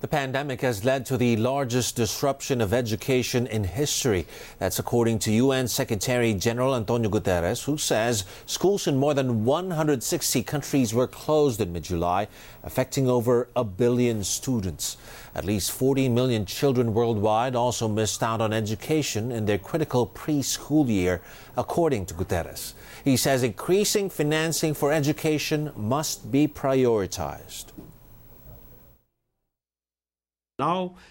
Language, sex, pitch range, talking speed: English, male, 110-160 Hz, 125 wpm